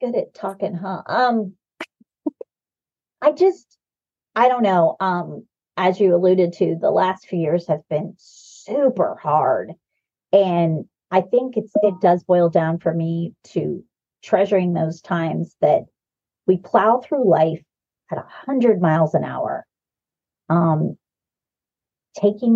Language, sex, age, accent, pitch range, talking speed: English, female, 40-59, American, 170-220 Hz, 135 wpm